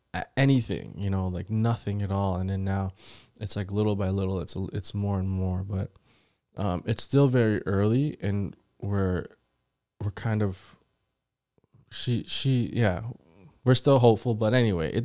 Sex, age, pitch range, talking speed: male, 20-39, 100-115 Hz, 160 wpm